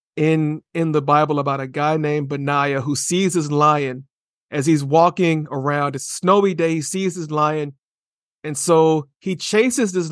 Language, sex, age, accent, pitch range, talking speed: English, male, 40-59, American, 150-185 Hz, 170 wpm